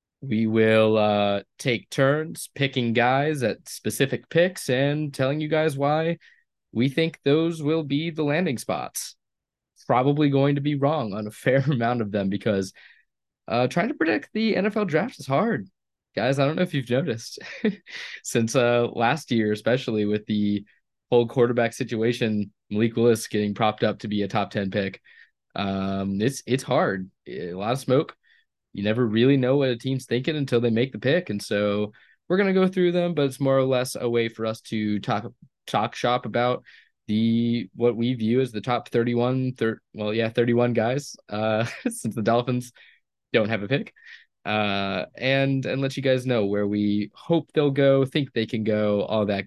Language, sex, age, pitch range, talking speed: English, male, 20-39, 110-135 Hz, 185 wpm